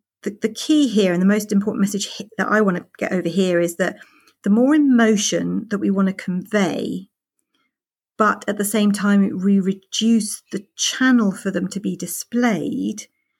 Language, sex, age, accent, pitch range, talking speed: English, female, 50-69, British, 190-225 Hz, 180 wpm